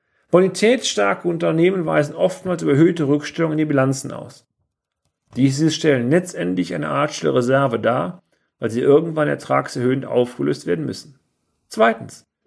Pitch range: 140-180 Hz